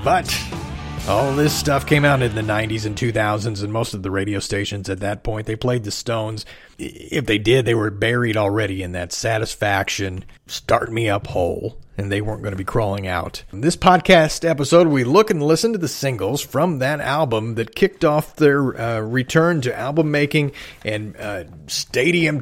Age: 40-59